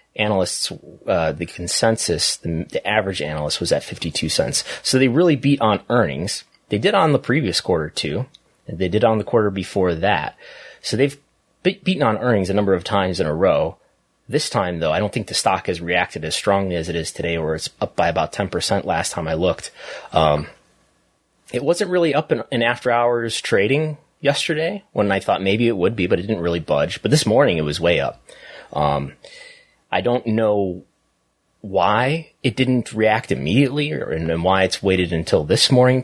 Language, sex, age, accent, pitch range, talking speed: English, male, 30-49, American, 95-140 Hz, 200 wpm